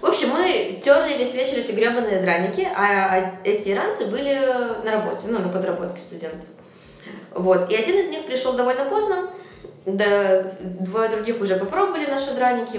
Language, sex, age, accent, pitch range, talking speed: Russian, female, 20-39, native, 190-260 Hz, 160 wpm